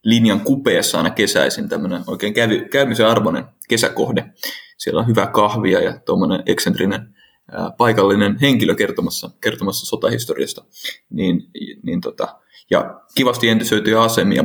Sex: male